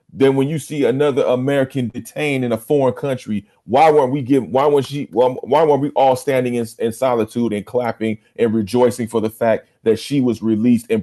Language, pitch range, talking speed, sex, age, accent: English, 110-140 Hz, 210 wpm, male, 40-59, American